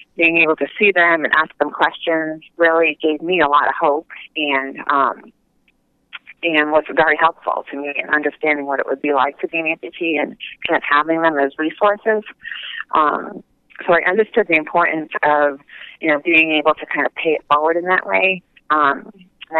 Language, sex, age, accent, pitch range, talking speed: English, female, 30-49, American, 145-170 Hz, 195 wpm